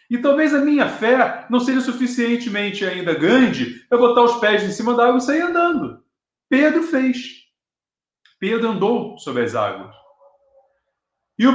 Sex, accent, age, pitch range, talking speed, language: male, Brazilian, 40-59, 205-255 Hz, 155 wpm, Portuguese